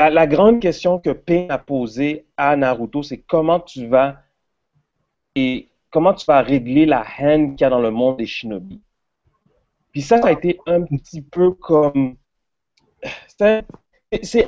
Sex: male